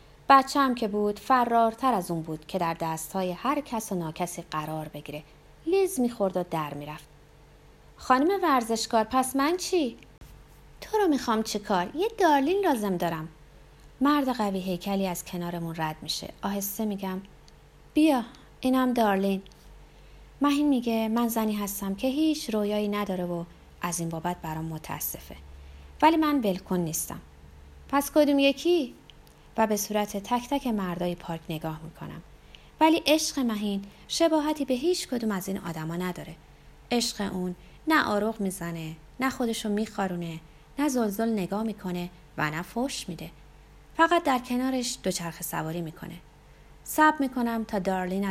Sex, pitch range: female, 175-265 Hz